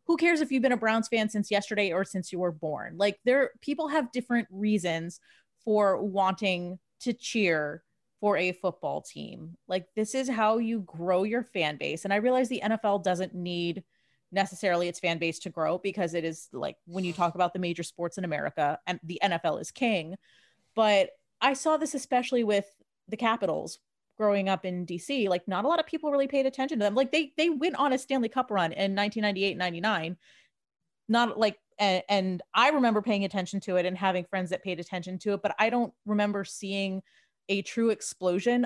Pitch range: 180-230 Hz